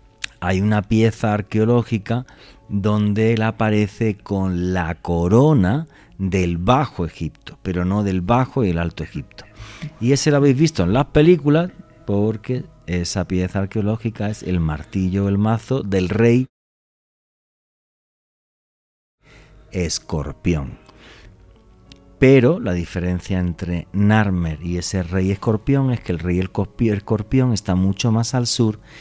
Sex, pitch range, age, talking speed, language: male, 90-125 Hz, 40-59, 125 wpm, Spanish